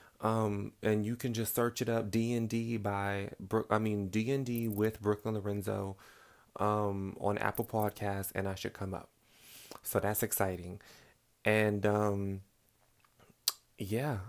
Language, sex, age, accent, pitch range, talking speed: English, male, 20-39, American, 100-115 Hz, 150 wpm